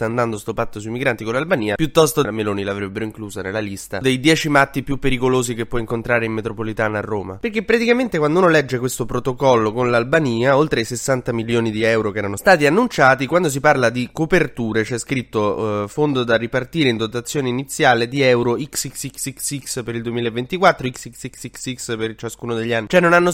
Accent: native